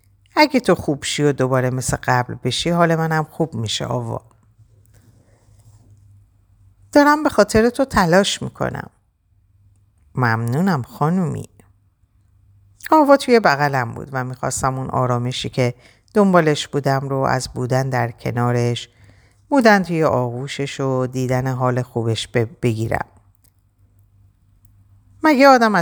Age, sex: 50-69, female